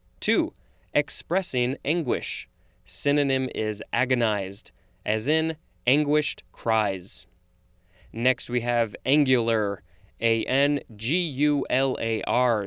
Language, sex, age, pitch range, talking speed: English, male, 20-39, 115-150 Hz, 70 wpm